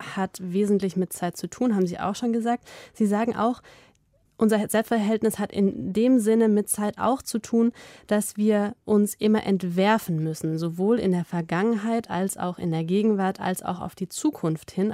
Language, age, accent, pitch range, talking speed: German, 20-39, German, 175-220 Hz, 185 wpm